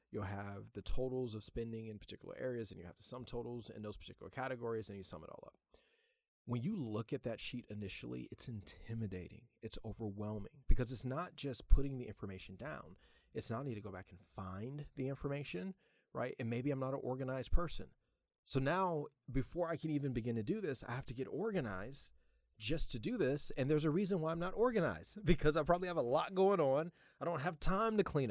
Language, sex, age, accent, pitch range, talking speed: English, male, 30-49, American, 110-155 Hz, 220 wpm